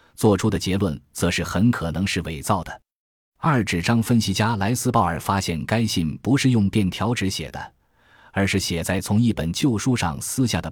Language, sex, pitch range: Chinese, male, 85-115 Hz